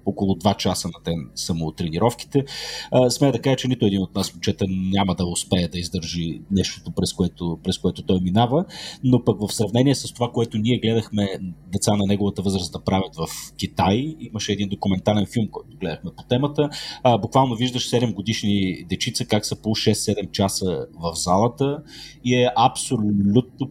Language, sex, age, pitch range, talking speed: Bulgarian, male, 30-49, 95-125 Hz, 175 wpm